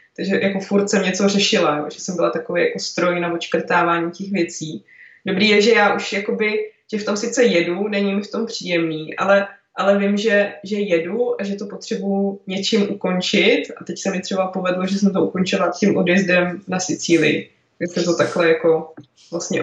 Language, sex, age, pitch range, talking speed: Czech, female, 20-39, 170-200 Hz, 195 wpm